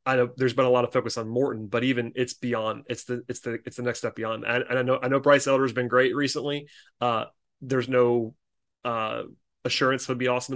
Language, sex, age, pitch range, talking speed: English, male, 30-49, 120-135 Hz, 245 wpm